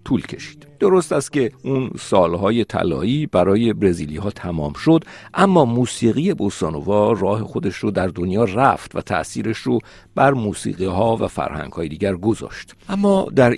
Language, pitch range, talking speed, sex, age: Persian, 90-125 Hz, 155 wpm, male, 50-69